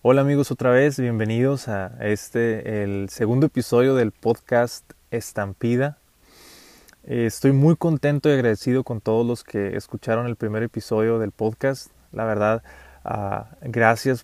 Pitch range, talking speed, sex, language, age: 110-130 Hz, 135 wpm, male, Spanish, 20-39